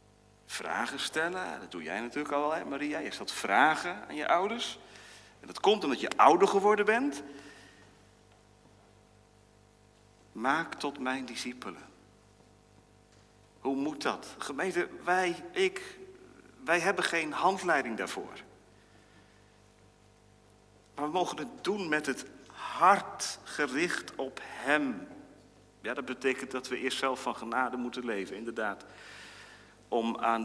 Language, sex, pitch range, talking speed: Dutch, male, 110-150 Hz, 125 wpm